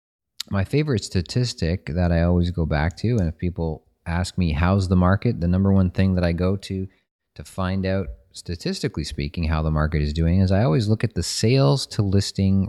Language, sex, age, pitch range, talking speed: English, male, 30-49, 80-95 Hz, 200 wpm